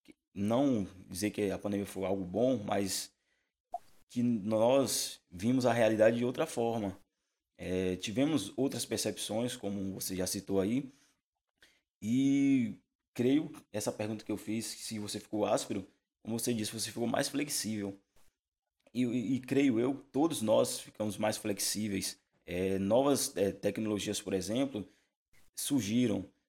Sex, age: male, 20-39